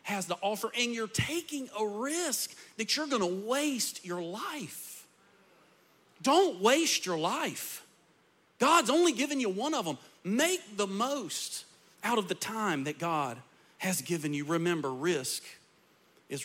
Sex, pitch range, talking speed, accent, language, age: male, 150-195 Hz, 150 wpm, American, English, 40-59